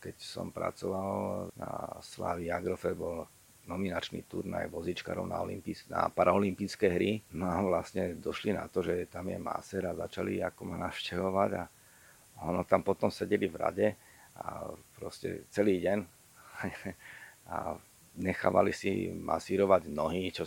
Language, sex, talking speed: Slovak, male, 135 wpm